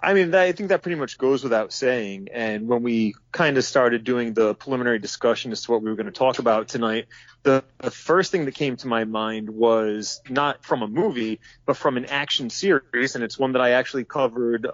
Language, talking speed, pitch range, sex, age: English, 230 wpm, 110-130 Hz, male, 30-49